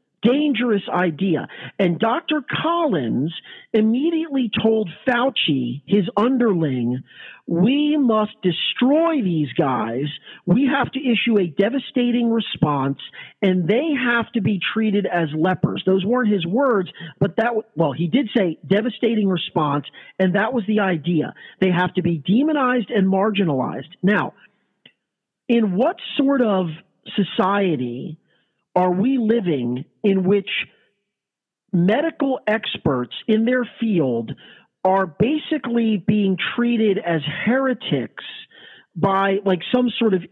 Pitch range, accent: 175-235 Hz, American